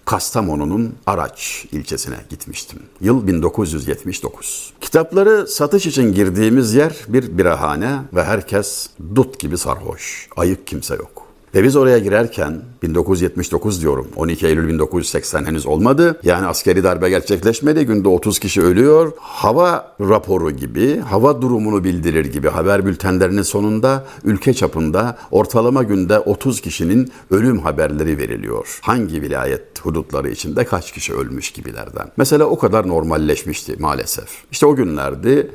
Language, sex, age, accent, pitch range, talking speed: Turkish, male, 60-79, native, 95-145 Hz, 125 wpm